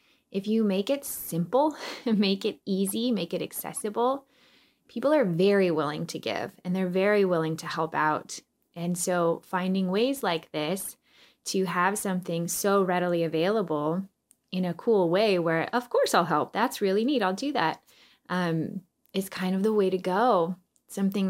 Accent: American